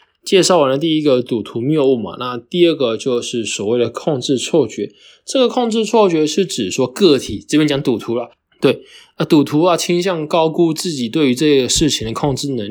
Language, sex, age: Chinese, male, 20-39